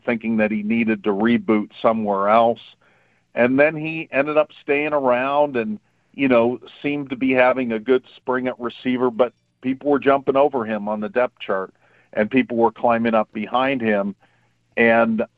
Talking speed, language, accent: 175 wpm, English, American